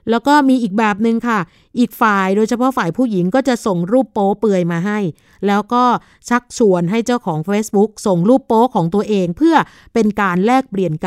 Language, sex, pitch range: Thai, female, 190-230 Hz